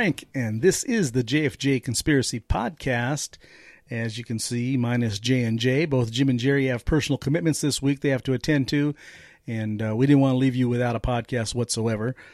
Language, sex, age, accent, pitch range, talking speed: English, male, 40-59, American, 115-145 Hz, 205 wpm